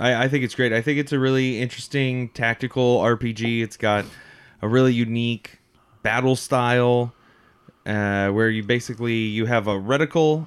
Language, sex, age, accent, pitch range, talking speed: English, male, 20-39, American, 110-135 Hz, 155 wpm